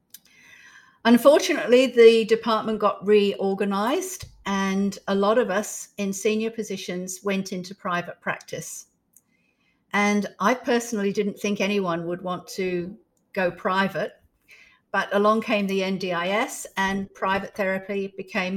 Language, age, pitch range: English, 50-69, 185-220 Hz